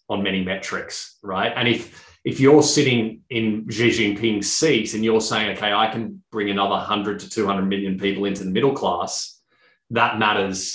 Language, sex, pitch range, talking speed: English, male, 100-115 Hz, 180 wpm